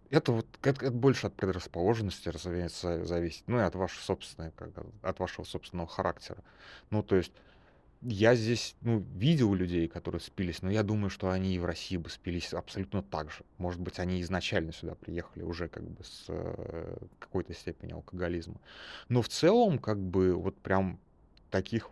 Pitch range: 85-105 Hz